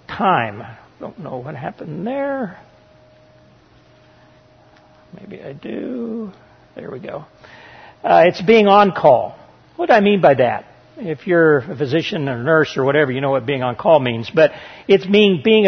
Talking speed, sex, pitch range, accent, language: 165 wpm, male, 140-195 Hz, American, English